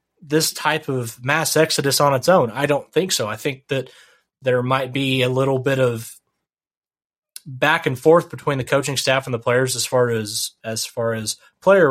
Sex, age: male, 30-49